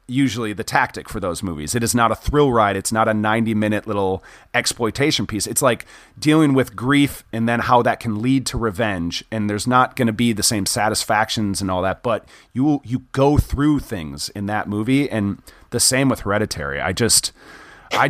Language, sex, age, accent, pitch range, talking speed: English, male, 30-49, American, 105-130 Hz, 205 wpm